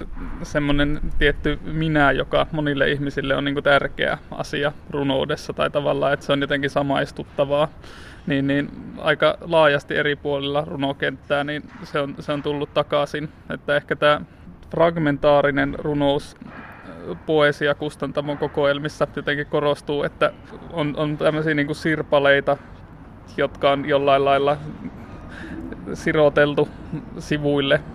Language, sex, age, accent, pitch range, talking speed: Finnish, male, 20-39, native, 140-150 Hz, 115 wpm